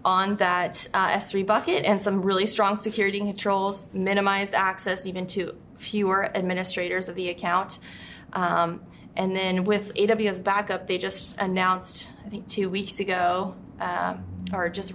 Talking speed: 150 wpm